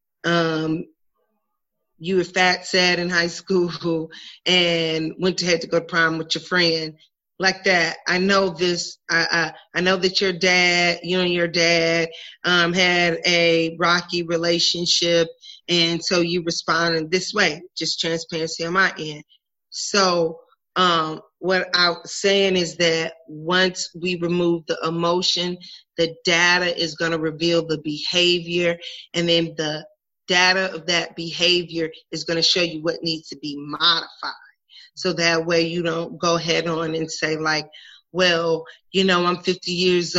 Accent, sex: American, female